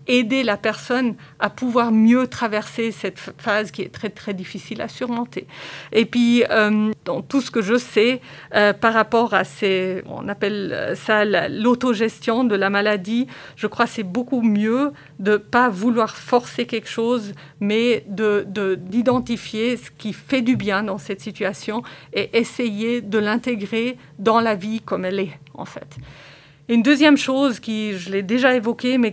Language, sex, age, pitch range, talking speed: French, female, 50-69, 210-245 Hz, 165 wpm